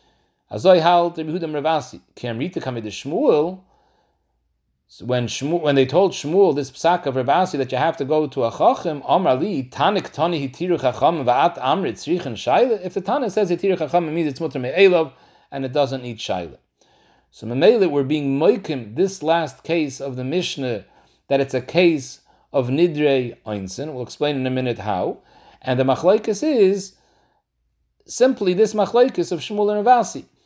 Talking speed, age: 155 wpm, 40-59